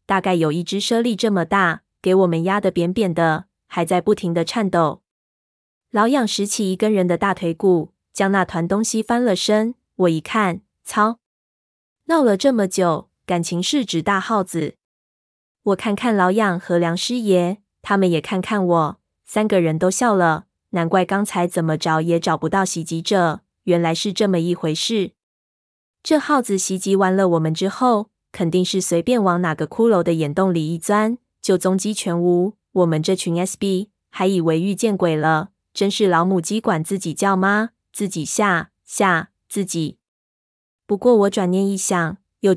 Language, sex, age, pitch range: Chinese, female, 20-39, 170-205 Hz